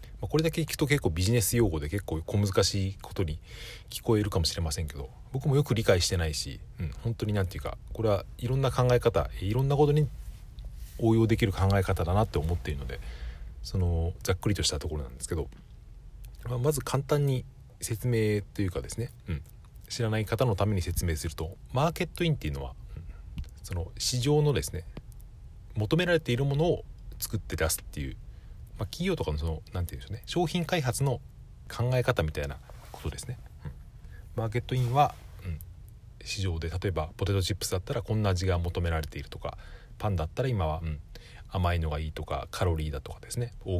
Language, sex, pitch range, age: Japanese, male, 85-120 Hz, 40-59